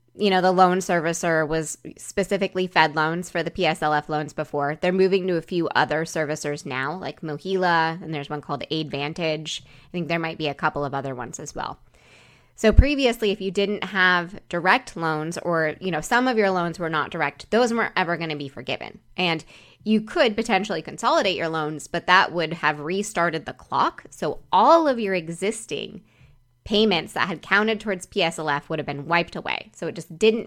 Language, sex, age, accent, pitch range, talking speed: English, female, 20-39, American, 155-195 Hz, 195 wpm